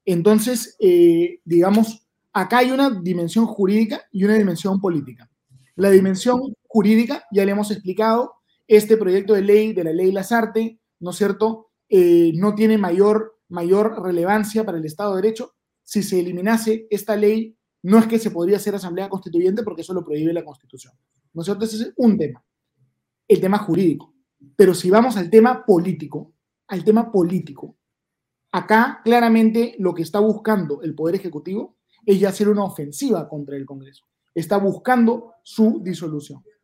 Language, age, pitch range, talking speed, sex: Spanish, 30-49, 175-220 Hz, 160 wpm, male